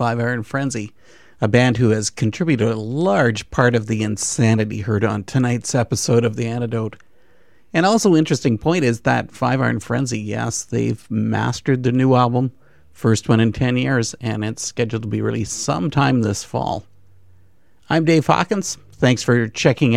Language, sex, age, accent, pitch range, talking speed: English, male, 50-69, American, 105-130 Hz, 170 wpm